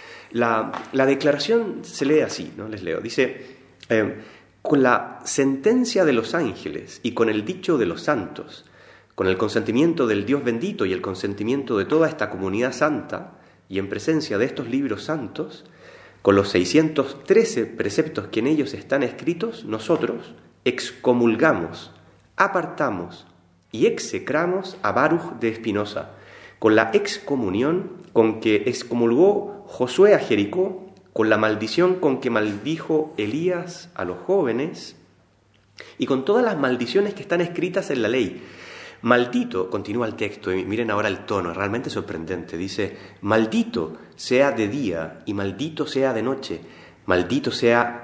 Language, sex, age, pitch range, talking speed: Spanish, male, 30-49, 105-160 Hz, 145 wpm